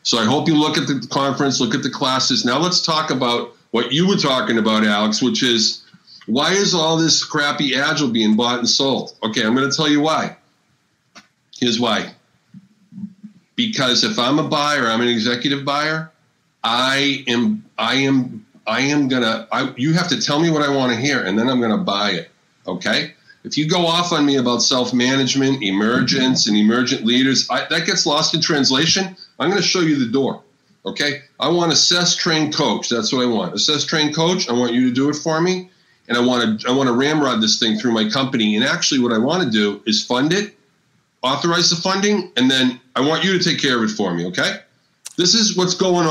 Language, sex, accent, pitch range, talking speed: English, male, American, 125-175 Hz, 215 wpm